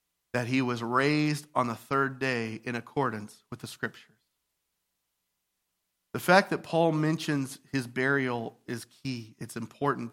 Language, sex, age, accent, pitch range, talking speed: English, male, 40-59, American, 140-170 Hz, 140 wpm